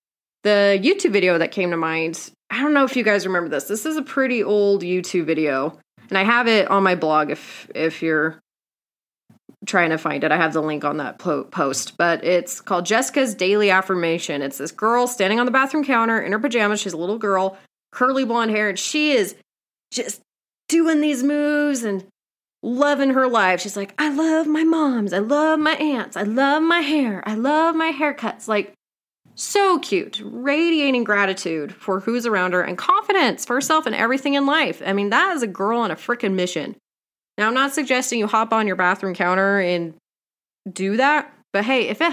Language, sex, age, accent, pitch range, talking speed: English, female, 30-49, American, 190-270 Hz, 200 wpm